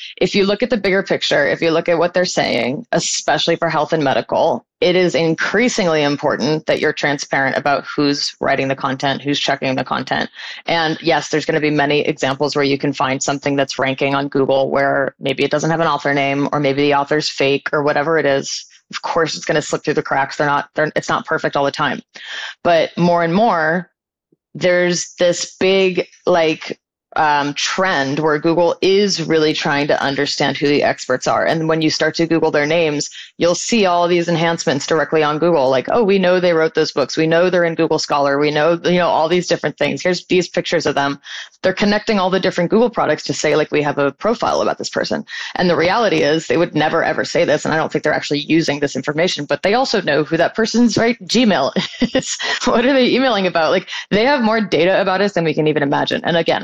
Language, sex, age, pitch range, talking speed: English, female, 20-39, 145-180 Hz, 230 wpm